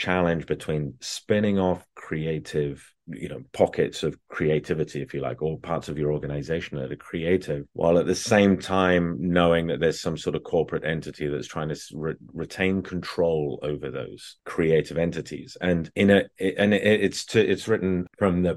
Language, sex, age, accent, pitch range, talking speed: English, male, 30-49, British, 75-95 Hz, 180 wpm